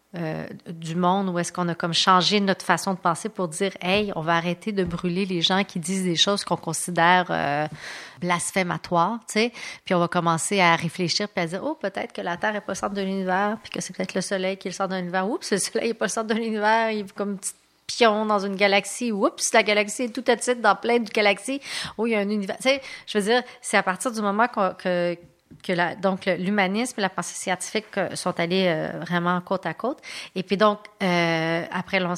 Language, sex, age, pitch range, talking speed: English, female, 30-49, 175-220 Hz, 250 wpm